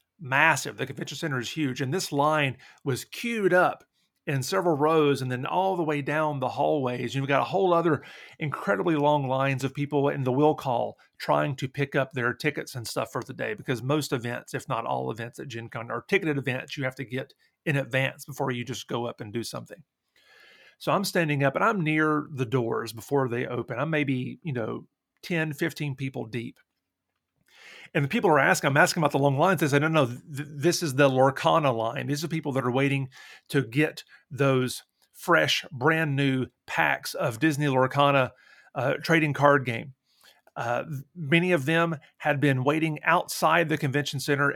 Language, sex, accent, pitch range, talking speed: English, male, American, 135-165 Hz, 200 wpm